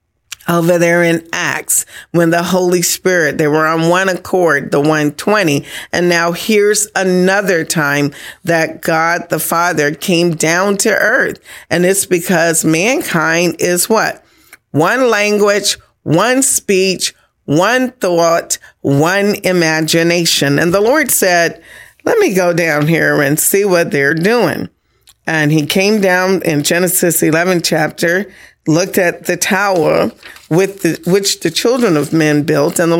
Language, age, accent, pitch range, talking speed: English, 40-59, American, 160-195 Hz, 140 wpm